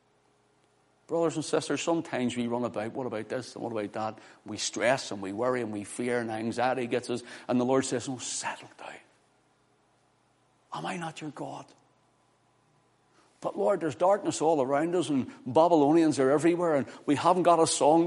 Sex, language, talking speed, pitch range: male, English, 185 wpm, 115-165 Hz